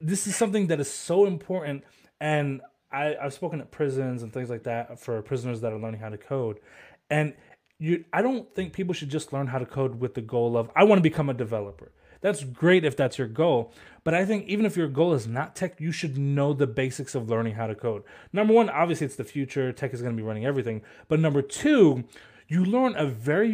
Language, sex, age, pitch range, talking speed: English, male, 30-49, 135-190 Hz, 235 wpm